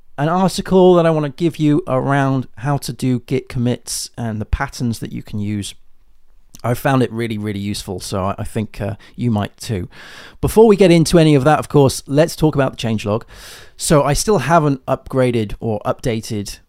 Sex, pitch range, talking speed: male, 105-135 Hz, 200 wpm